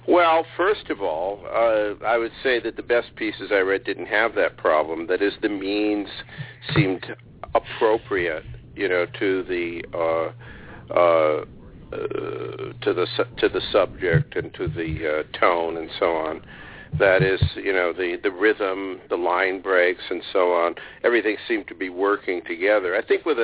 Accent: American